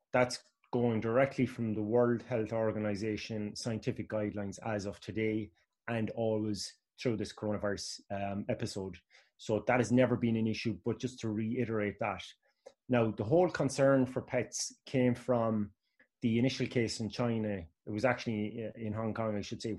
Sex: male